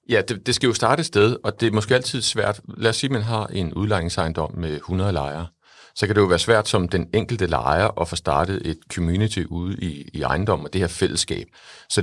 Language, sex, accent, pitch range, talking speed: English, male, Danish, 90-115 Hz, 240 wpm